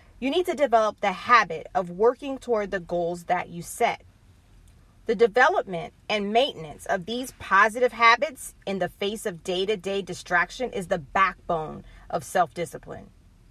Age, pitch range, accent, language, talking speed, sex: 30-49, 180-250 Hz, American, English, 145 wpm, female